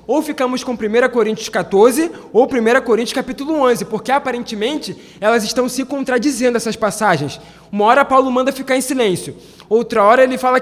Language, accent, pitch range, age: Portuguese, Brazilian, 195-250 Hz, 20-39